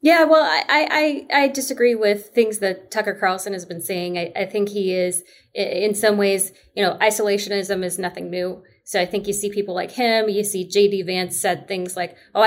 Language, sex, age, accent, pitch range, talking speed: English, female, 20-39, American, 185-215 Hz, 210 wpm